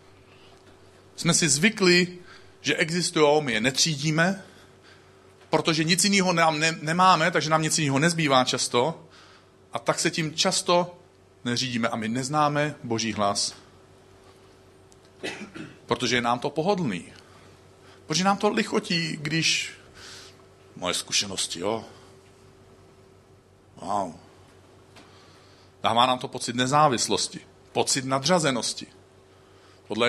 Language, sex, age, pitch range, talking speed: Czech, male, 40-59, 95-145 Hz, 105 wpm